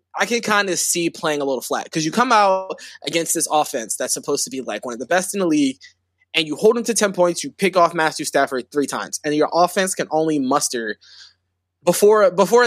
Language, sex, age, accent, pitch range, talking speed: English, male, 20-39, American, 145-195 Hz, 235 wpm